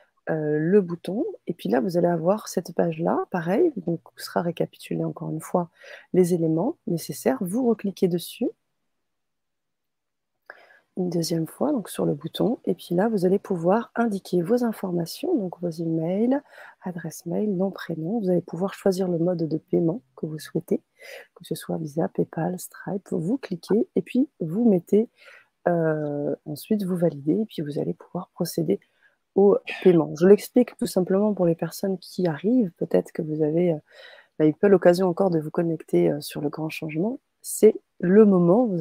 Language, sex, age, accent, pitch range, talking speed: French, female, 30-49, French, 165-200 Hz, 175 wpm